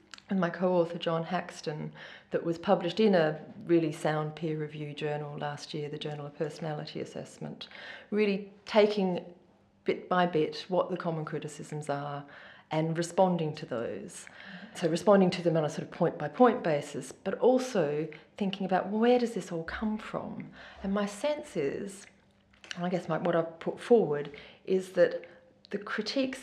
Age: 30-49